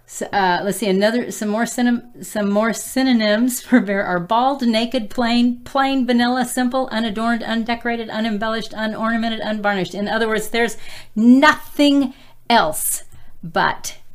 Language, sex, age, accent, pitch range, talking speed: English, female, 40-59, American, 180-225 Hz, 125 wpm